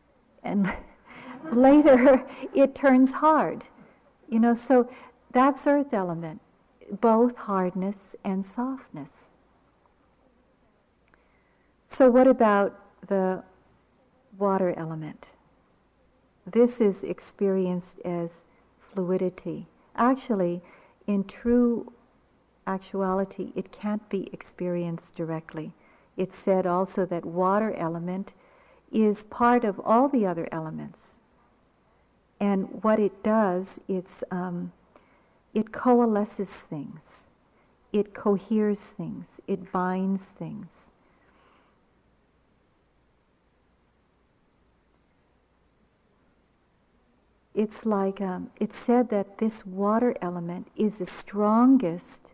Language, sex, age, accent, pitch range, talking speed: English, female, 60-79, American, 185-240 Hz, 85 wpm